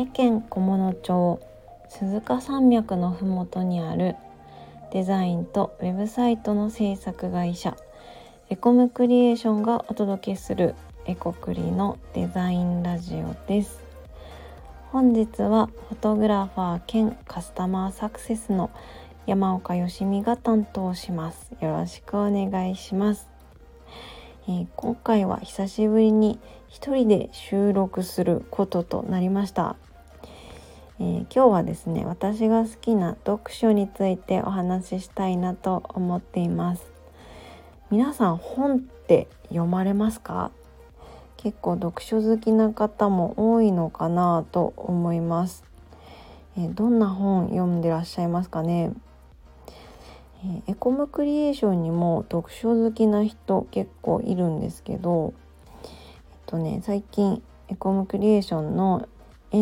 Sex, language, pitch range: female, Japanese, 165-215 Hz